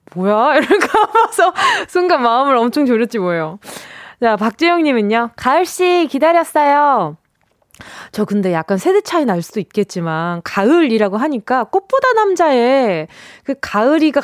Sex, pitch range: female, 190-305 Hz